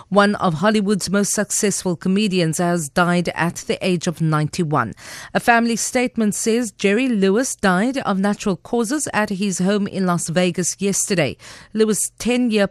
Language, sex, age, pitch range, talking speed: English, female, 40-59, 175-225 Hz, 150 wpm